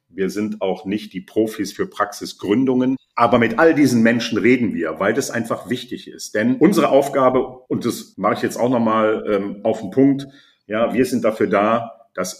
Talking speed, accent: 190 wpm, German